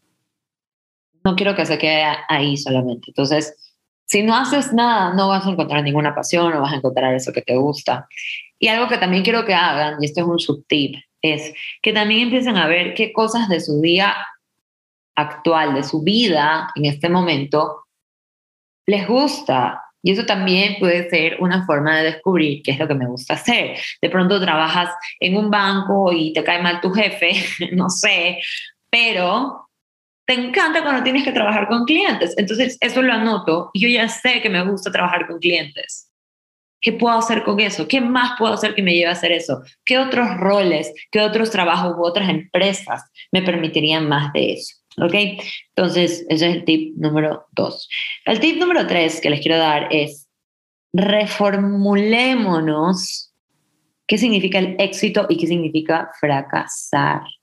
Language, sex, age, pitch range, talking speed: Spanish, female, 20-39, 155-215 Hz, 175 wpm